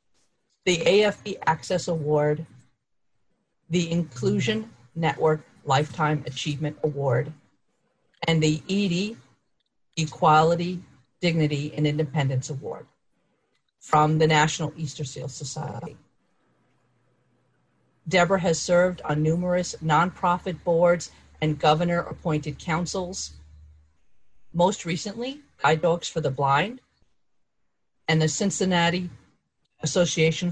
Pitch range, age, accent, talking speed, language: 145-180 Hz, 50-69, American, 90 wpm, English